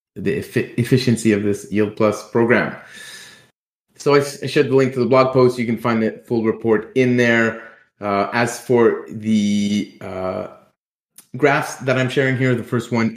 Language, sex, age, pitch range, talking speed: English, male, 30-49, 110-130 Hz, 180 wpm